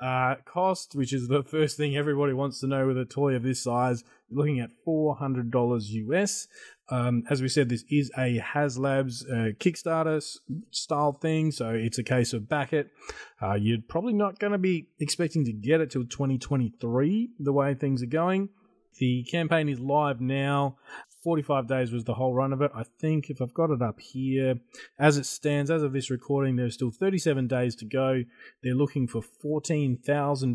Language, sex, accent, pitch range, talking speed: English, male, Australian, 125-150 Hz, 190 wpm